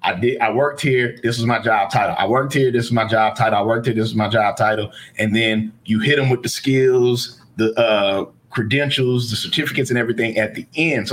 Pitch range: 115-145 Hz